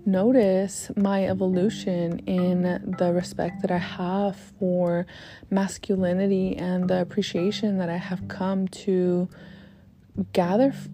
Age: 20-39